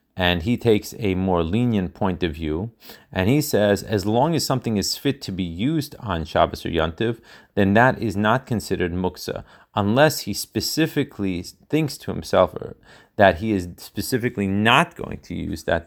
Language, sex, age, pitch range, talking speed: Hebrew, male, 30-49, 90-115 Hz, 175 wpm